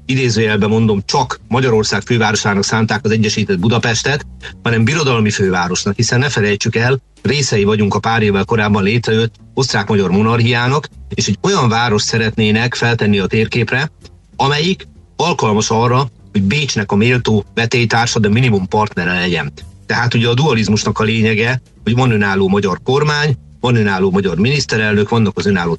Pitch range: 100-120 Hz